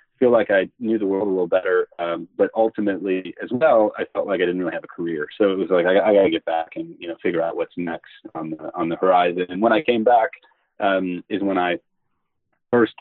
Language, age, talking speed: English, 30-49, 255 wpm